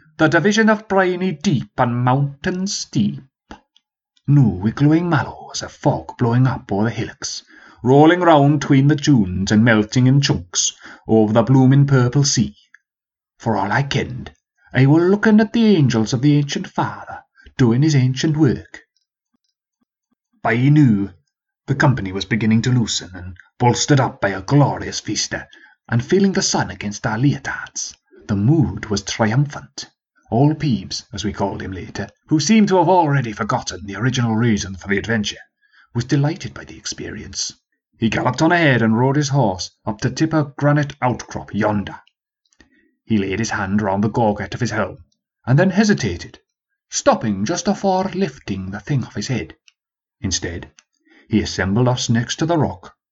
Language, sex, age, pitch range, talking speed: English, male, 30-49, 110-155 Hz, 165 wpm